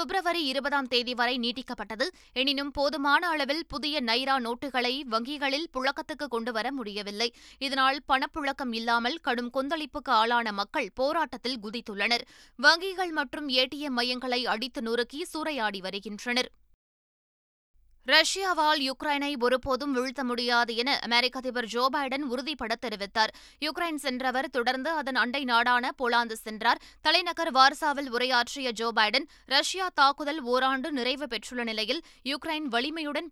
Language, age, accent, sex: Tamil, 20-39, native, female